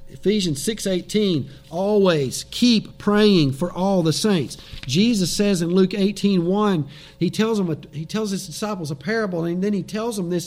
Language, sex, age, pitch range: English, male, 50-69, 135-180 Hz